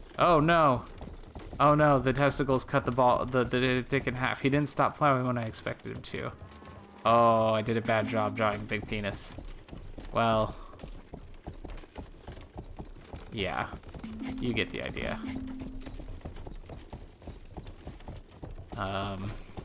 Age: 20-39